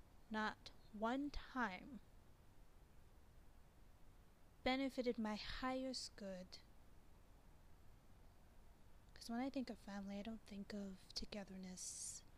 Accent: American